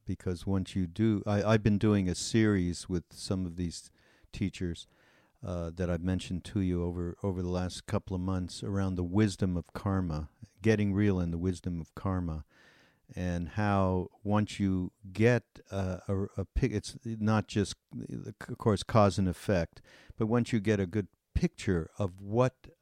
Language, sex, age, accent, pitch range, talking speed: English, male, 60-79, American, 90-105 Hz, 175 wpm